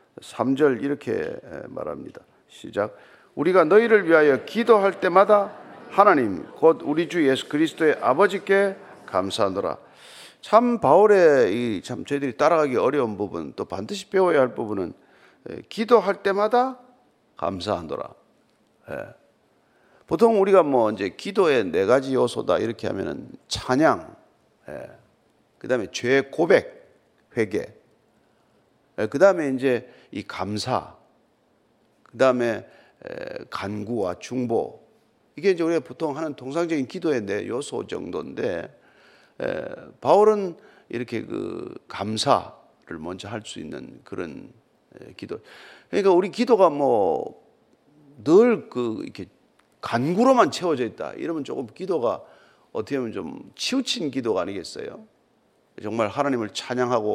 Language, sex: Korean, male